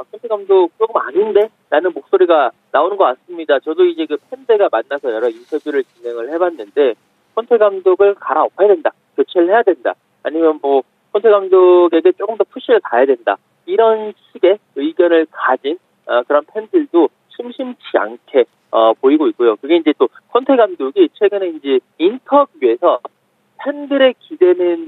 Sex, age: male, 40-59